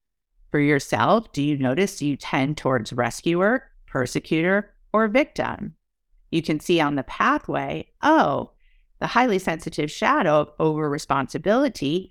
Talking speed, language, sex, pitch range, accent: 125 wpm, English, female, 135-190 Hz, American